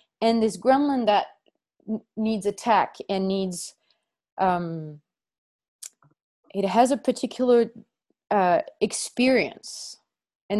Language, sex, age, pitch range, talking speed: English, female, 30-49, 200-235 Hz, 90 wpm